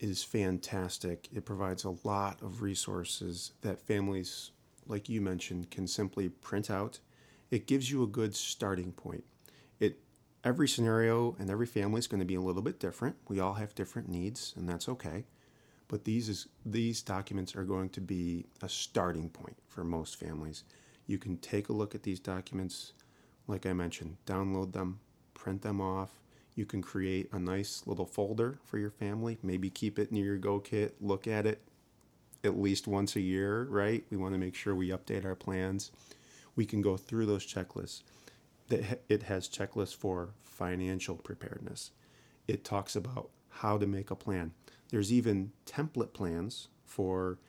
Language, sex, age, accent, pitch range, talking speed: English, male, 30-49, American, 95-110 Hz, 175 wpm